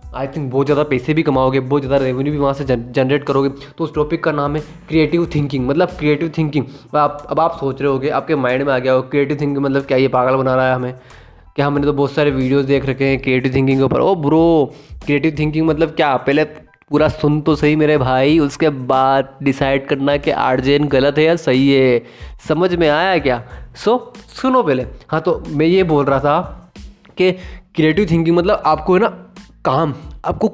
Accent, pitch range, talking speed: native, 135-175 Hz, 210 wpm